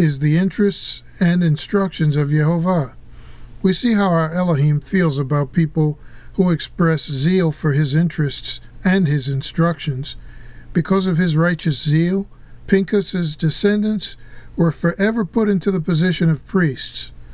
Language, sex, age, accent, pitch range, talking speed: English, male, 50-69, American, 150-185 Hz, 135 wpm